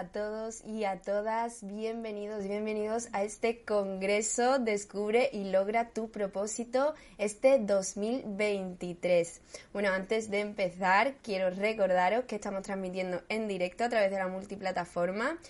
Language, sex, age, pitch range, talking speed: Spanish, female, 20-39, 185-225 Hz, 130 wpm